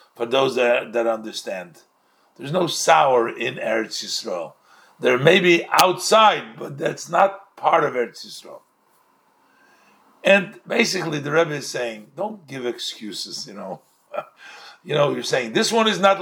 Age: 50-69